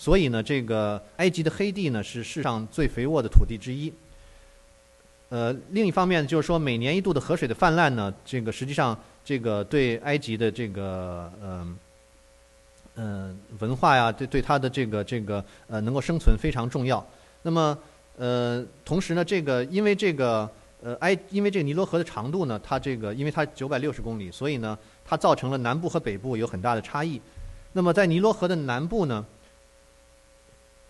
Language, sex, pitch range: English, male, 110-155 Hz